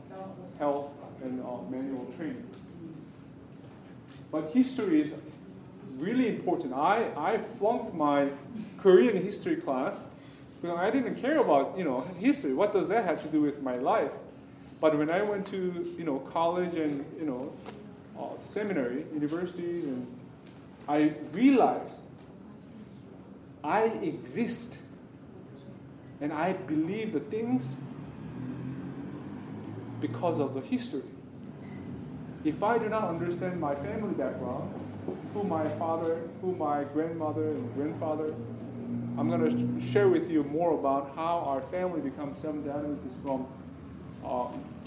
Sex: male